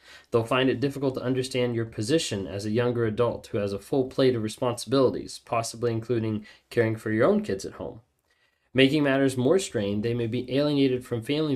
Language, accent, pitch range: English, American, 110-130 Hz